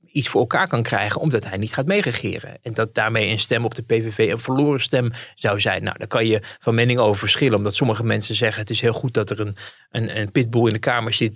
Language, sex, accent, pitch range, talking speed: Dutch, male, Dutch, 110-140 Hz, 260 wpm